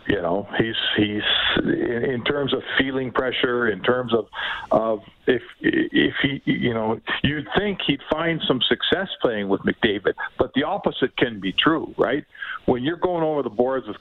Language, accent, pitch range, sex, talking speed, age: English, American, 110-135 Hz, male, 175 wpm, 50-69